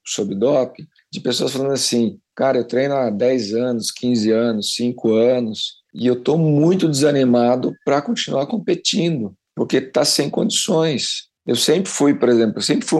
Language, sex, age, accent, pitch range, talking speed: Portuguese, male, 50-69, Brazilian, 115-140 Hz, 165 wpm